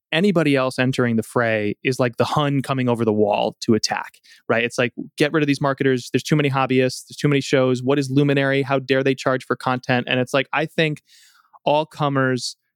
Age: 20-39